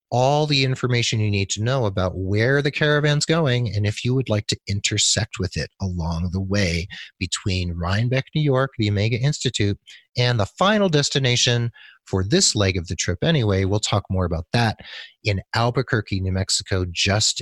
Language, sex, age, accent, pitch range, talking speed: English, male, 40-59, American, 95-125 Hz, 180 wpm